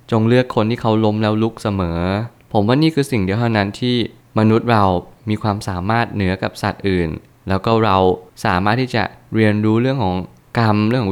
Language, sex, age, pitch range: Thai, male, 20-39, 95-120 Hz